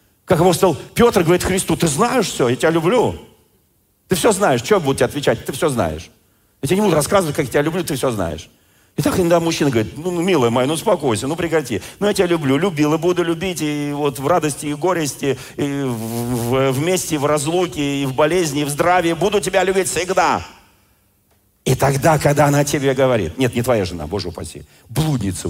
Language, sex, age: Russian, male, 50-69